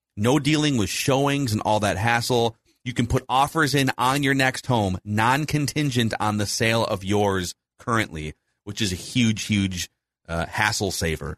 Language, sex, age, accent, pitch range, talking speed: English, male, 30-49, American, 95-125 Hz, 170 wpm